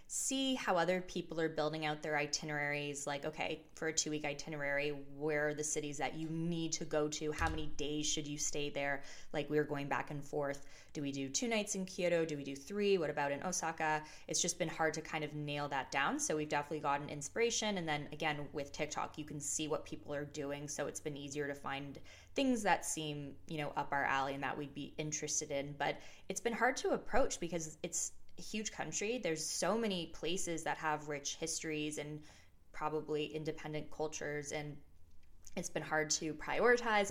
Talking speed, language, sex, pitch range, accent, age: 205 wpm, English, female, 145-165 Hz, American, 20-39